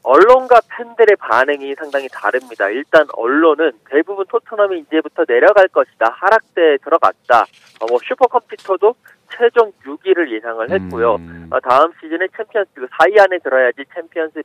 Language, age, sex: Korean, 40-59, male